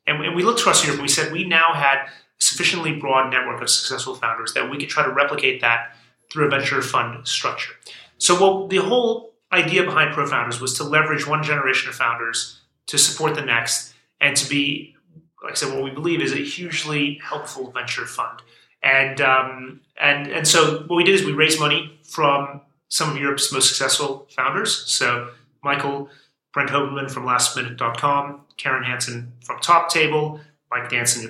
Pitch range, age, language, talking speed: 135-165 Hz, 30-49, English, 185 wpm